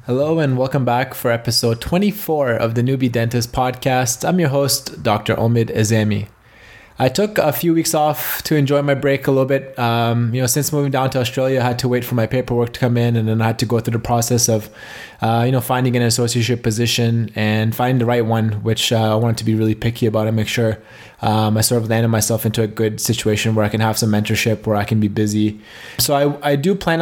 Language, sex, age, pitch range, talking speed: English, male, 20-39, 115-135 Hz, 240 wpm